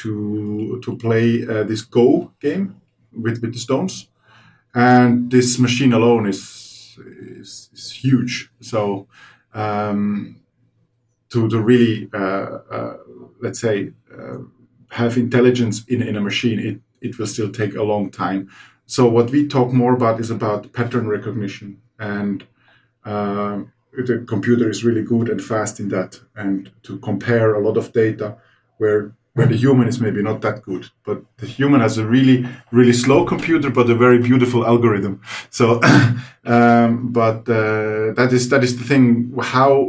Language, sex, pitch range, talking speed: Finnish, male, 105-120 Hz, 160 wpm